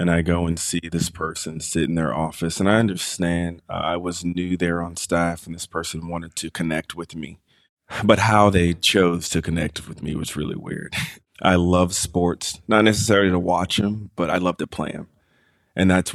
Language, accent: English, American